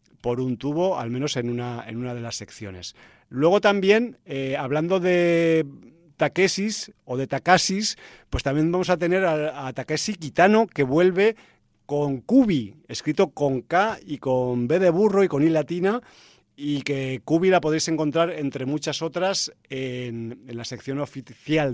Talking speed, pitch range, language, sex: 165 wpm, 125-160 Hz, Spanish, male